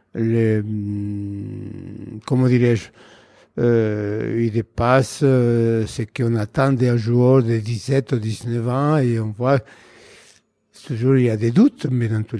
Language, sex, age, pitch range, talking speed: French, male, 60-79, 115-145 Hz, 140 wpm